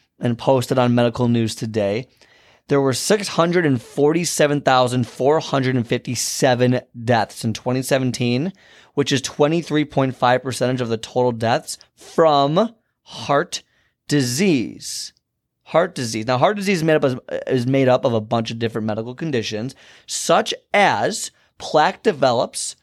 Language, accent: English, American